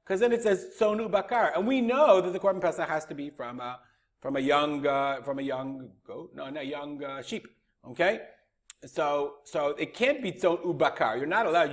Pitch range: 145-200 Hz